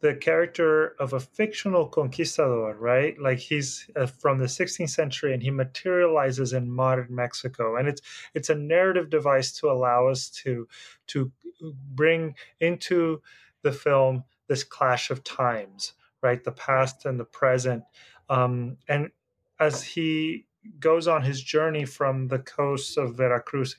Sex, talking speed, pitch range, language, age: male, 145 wpm, 125-145 Hz, English, 30-49